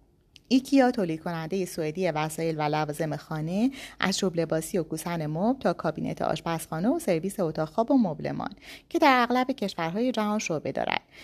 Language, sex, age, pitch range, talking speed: Persian, female, 30-49, 160-235 Hz, 150 wpm